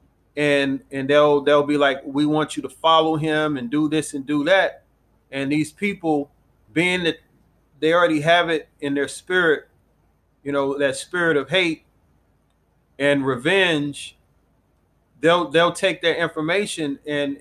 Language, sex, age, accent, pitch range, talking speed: English, male, 30-49, American, 140-165 Hz, 150 wpm